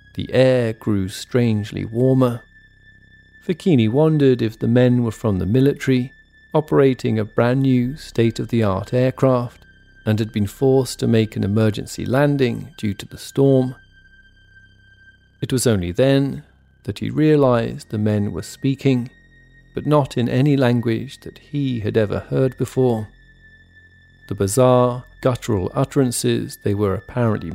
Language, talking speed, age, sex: English, 135 wpm, 40-59, male